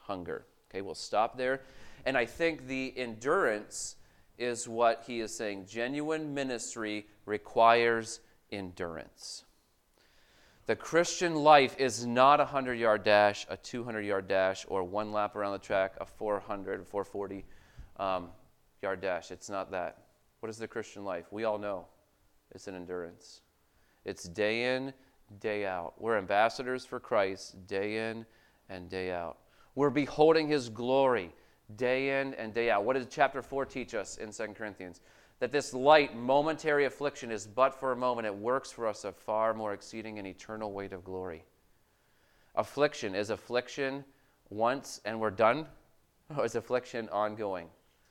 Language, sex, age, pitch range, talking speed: English, male, 30-49, 100-130 Hz, 150 wpm